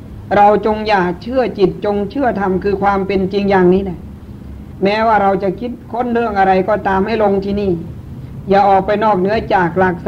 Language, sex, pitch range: Thai, female, 185-205 Hz